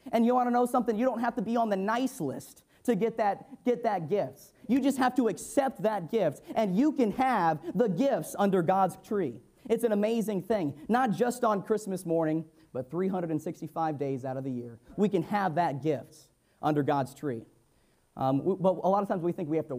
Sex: male